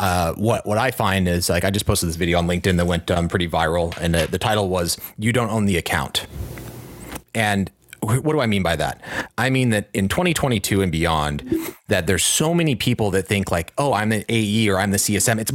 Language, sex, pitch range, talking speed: English, male, 90-125 Hz, 235 wpm